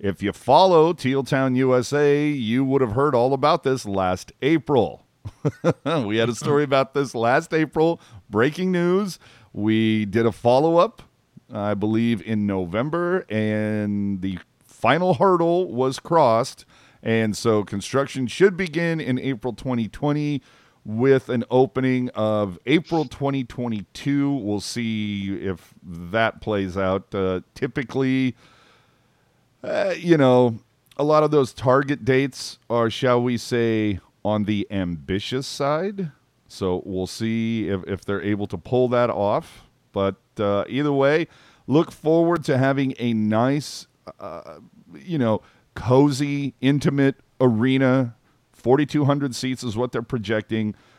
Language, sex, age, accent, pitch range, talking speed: English, male, 40-59, American, 105-140 Hz, 130 wpm